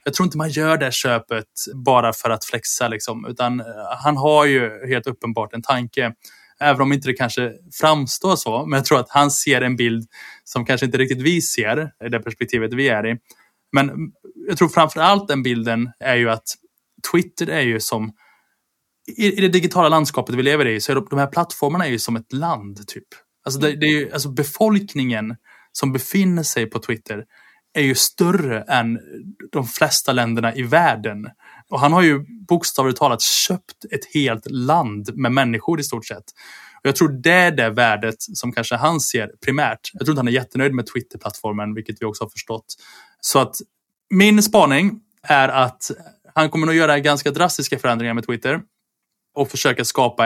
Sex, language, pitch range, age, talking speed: male, Swedish, 115-155 Hz, 20-39, 185 wpm